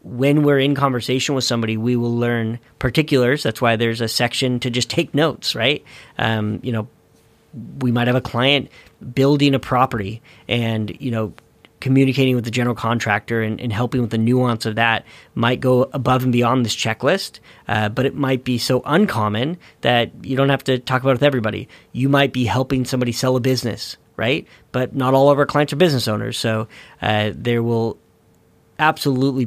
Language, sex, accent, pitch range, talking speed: English, male, American, 115-130 Hz, 190 wpm